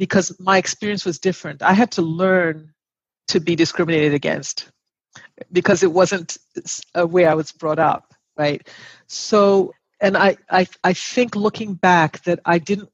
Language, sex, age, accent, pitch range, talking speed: English, female, 50-69, American, 160-195 Hz, 160 wpm